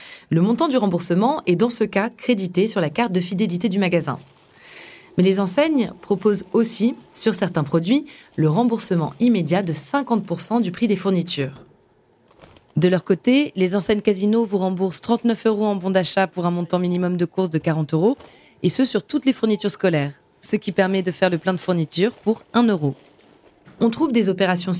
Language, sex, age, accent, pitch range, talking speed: French, female, 20-39, French, 170-230 Hz, 190 wpm